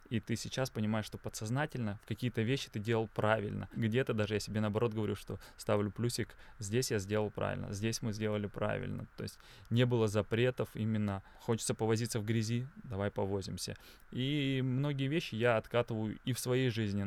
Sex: male